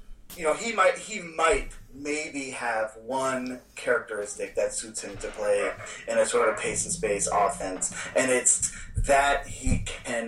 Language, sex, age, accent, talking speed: English, male, 30-49, American, 165 wpm